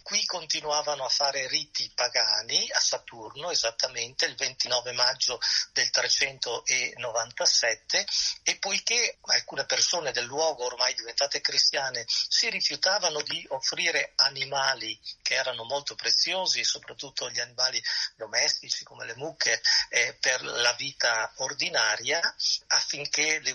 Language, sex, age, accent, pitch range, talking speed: Italian, male, 40-59, native, 130-190 Hz, 115 wpm